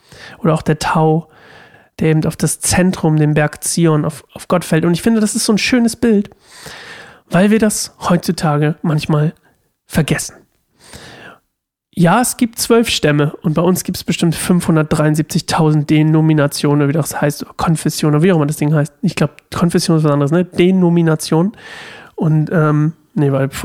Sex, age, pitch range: male, 40-59, 155-190 Hz